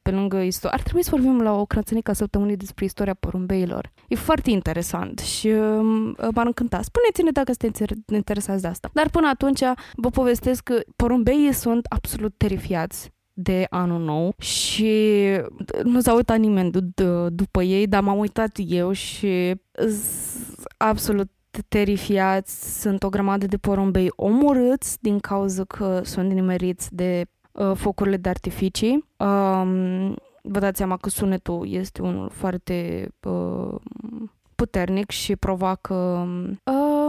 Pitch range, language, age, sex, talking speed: 185-230 Hz, Romanian, 20-39, female, 140 wpm